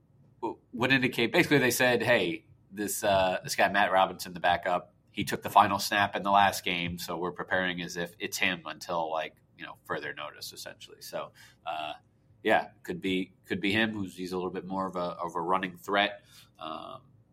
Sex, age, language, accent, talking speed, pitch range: male, 30-49, English, American, 200 wpm, 90-115 Hz